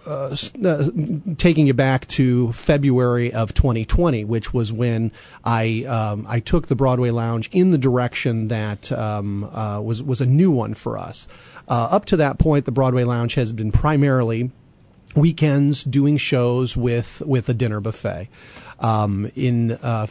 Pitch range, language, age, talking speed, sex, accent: 115-140 Hz, English, 40-59, 160 wpm, male, American